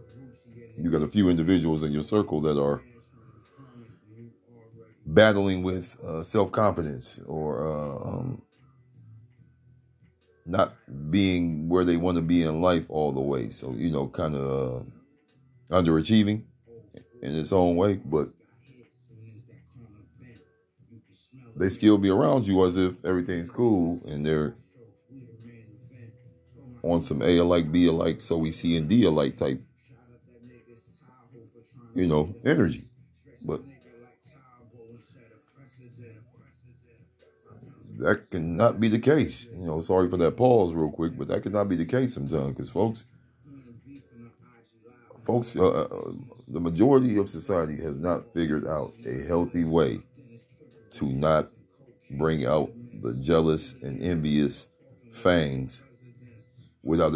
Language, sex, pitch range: English, male, 85-125 Hz